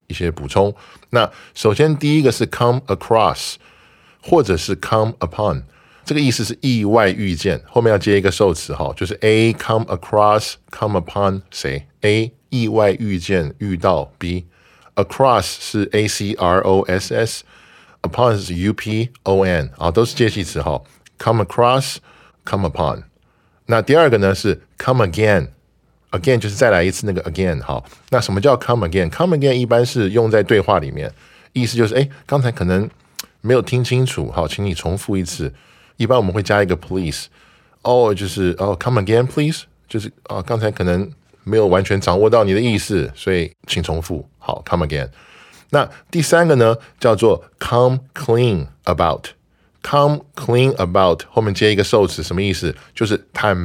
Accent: American